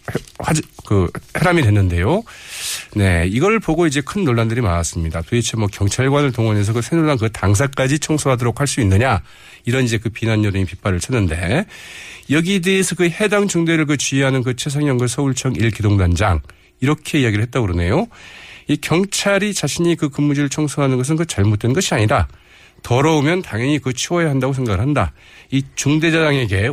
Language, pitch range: Korean, 100-140 Hz